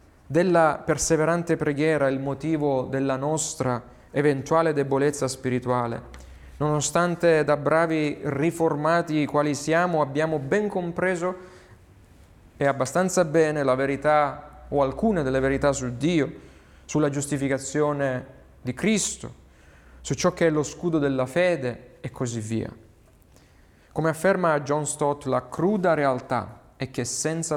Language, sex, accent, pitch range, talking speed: Italian, male, native, 125-155 Hz, 120 wpm